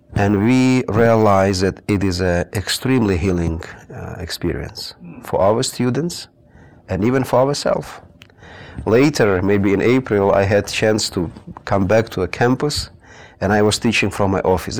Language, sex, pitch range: English, male, 95-125 Hz